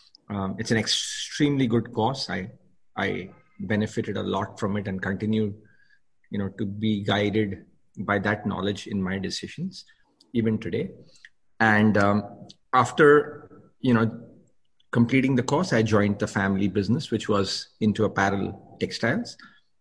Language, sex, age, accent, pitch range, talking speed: English, male, 30-49, Indian, 100-115 Hz, 140 wpm